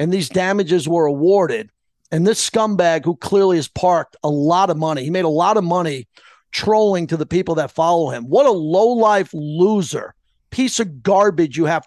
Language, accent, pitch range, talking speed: English, American, 165-210 Hz, 195 wpm